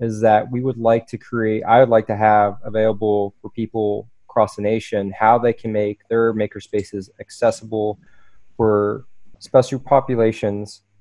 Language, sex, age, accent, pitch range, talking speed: English, male, 20-39, American, 100-115 Hz, 155 wpm